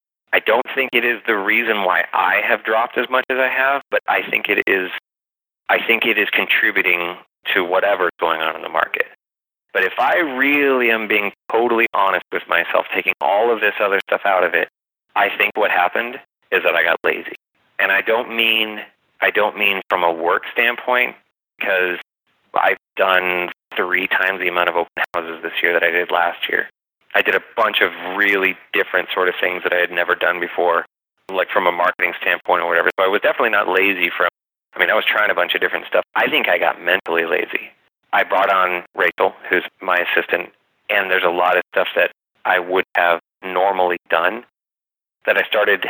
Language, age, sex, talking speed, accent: English, 30-49, male, 205 wpm, American